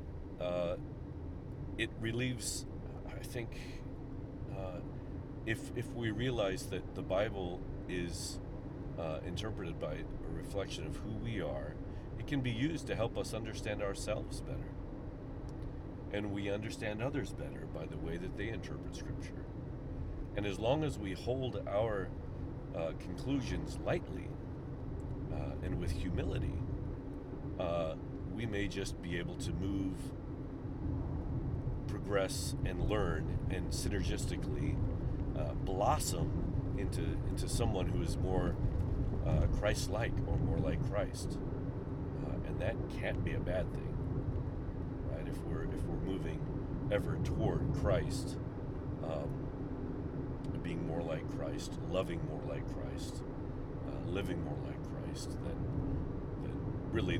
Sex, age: male, 40-59